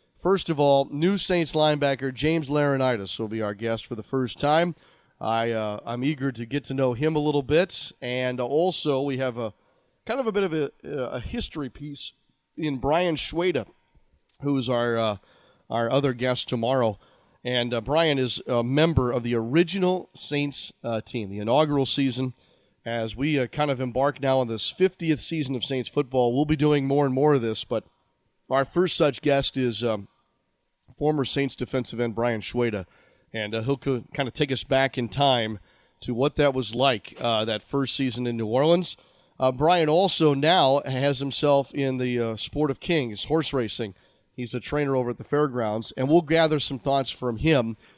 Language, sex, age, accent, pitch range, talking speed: English, male, 30-49, American, 115-145 Hz, 190 wpm